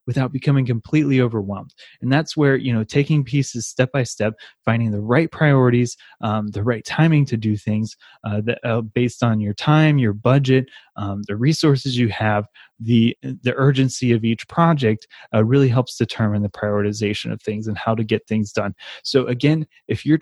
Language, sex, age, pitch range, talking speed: English, male, 20-39, 115-140 Hz, 185 wpm